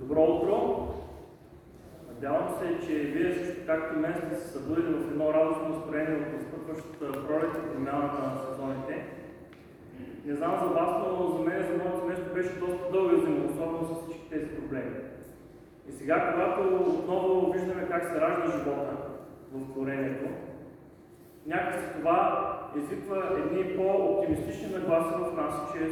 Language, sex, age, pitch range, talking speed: Bulgarian, male, 30-49, 155-190 Hz, 135 wpm